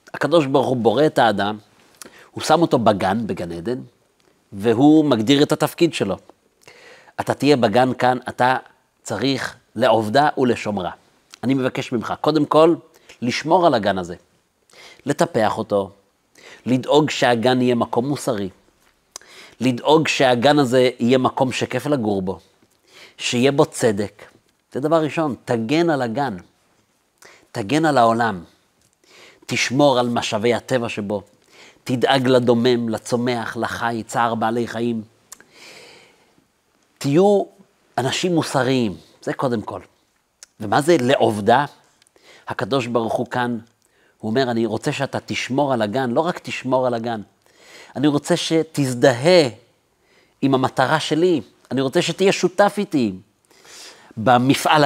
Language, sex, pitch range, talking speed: Hebrew, male, 115-145 Hz, 120 wpm